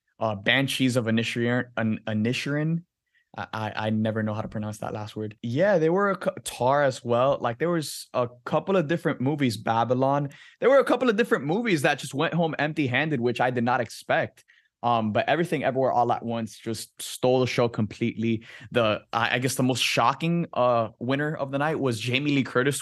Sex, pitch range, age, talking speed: male, 115-140 Hz, 20-39, 210 wpm